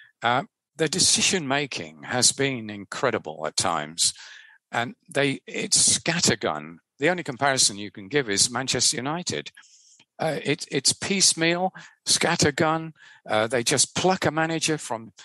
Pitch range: 110-160 Hz